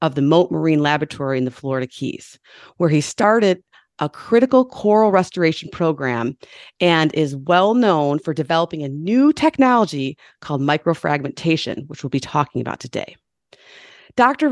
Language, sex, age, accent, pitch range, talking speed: English, female, 30-49, American, 150-200 Hz, 145 wpm